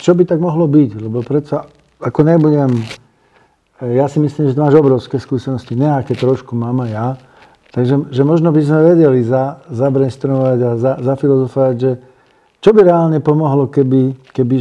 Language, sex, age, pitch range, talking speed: Slovak, male, 50-69, 120-140 Hz, 160 wpm